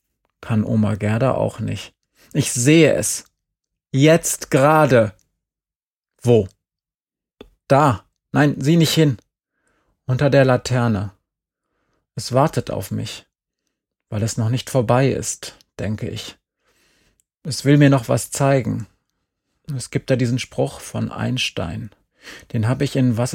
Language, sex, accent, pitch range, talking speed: German, male, German, 110-135 Hz, 125 wpm